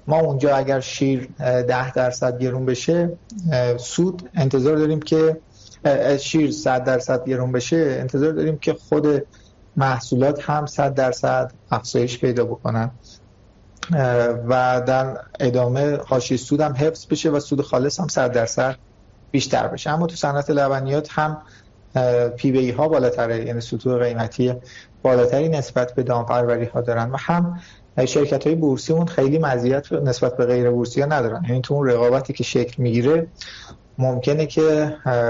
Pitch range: 120-145 Hz